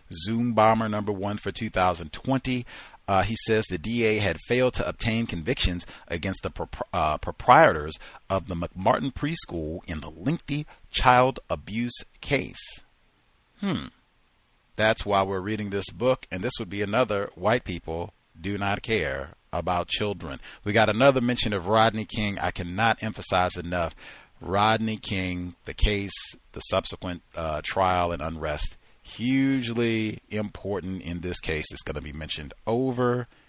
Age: 40-59